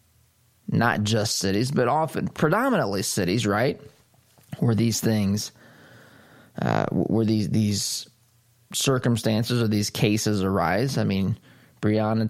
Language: English